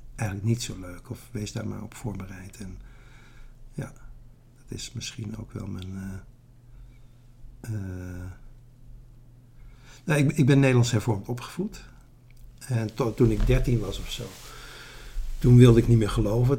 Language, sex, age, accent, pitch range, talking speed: Dutch, male, 50-69, Dutch, 105-125 Hz, 150 wpm